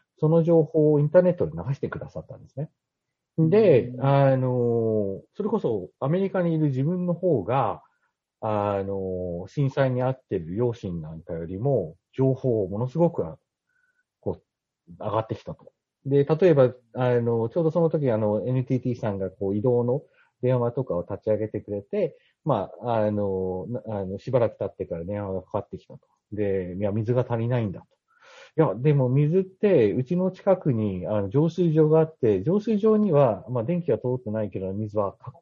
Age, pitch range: 40-59, 105-165 Hz